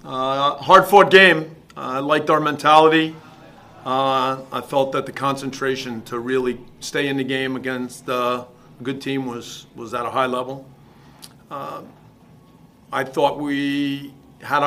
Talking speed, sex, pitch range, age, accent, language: 145 wpm, male, 125-145 Hz, 40-59, American, English